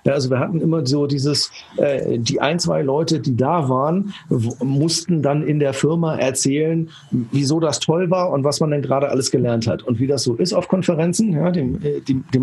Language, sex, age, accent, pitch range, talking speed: German, male, 50-69, German, 135-180 Hz, 215 wpm